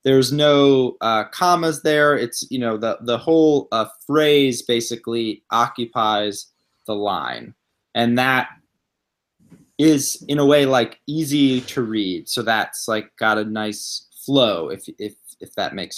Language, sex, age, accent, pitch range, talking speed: English, male, 20-39, American, 110-140 Hz, 145 wpm